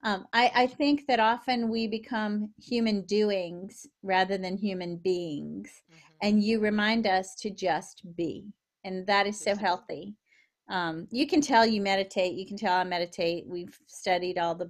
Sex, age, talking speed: female, 40-59, 165 wpm